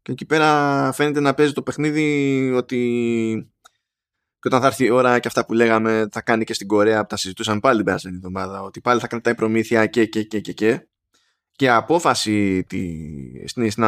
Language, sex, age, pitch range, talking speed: Greek, male, 20-39, 105-145 Hz, 190 wpm